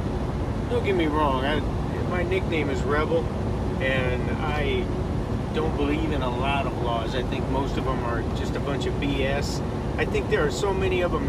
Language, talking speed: English, 195 wpm